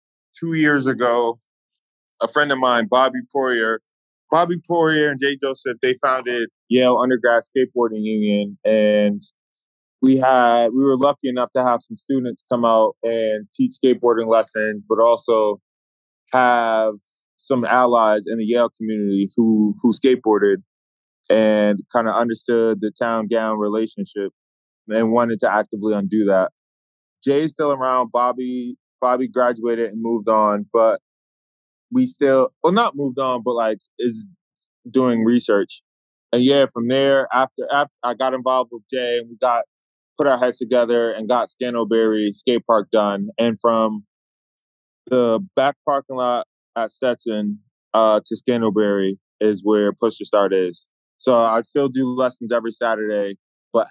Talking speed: 145 wpm